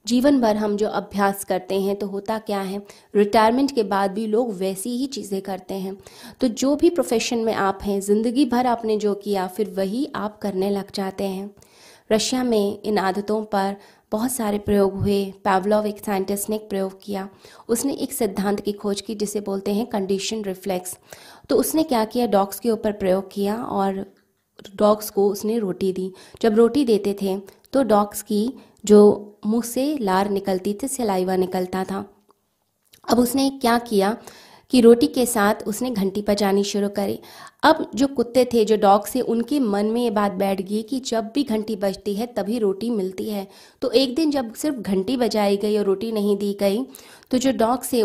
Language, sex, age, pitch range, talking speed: Hindi, female, 20-39, 200-235 Hz, 190 wpm